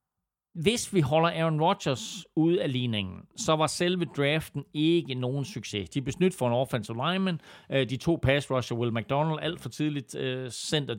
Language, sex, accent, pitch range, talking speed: Danish, male, native, 120-145 Hz, 170 wpm